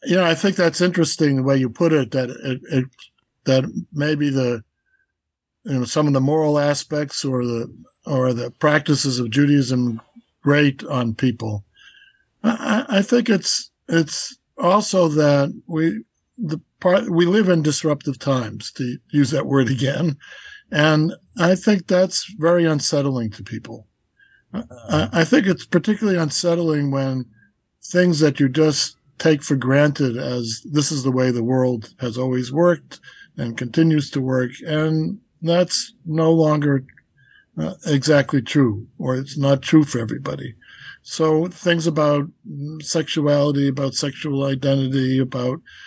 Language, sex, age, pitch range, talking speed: English, male, 60-79, 130-165 Hz, 145 wpm